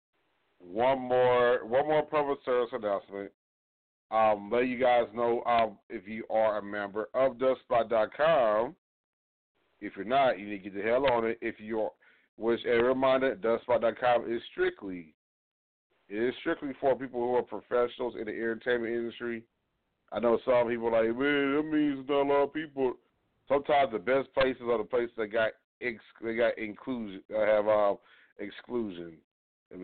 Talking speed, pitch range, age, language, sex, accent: 165 wpm, 110-130 Hz, 40-59, English, male, American